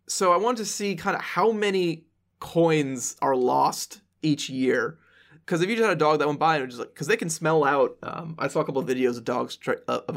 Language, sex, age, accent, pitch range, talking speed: English, male, 20-39, American, 125-165 Hz, 240 wpm